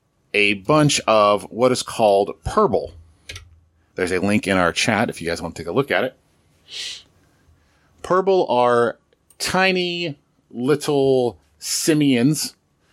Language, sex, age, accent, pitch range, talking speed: English, male, 30-49, American, 100-135 Hz, 130 wpm